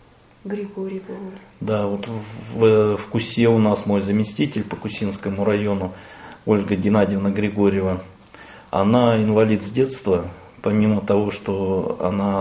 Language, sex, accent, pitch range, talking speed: Russian, male, native, 95-110 Hz, 105 wpm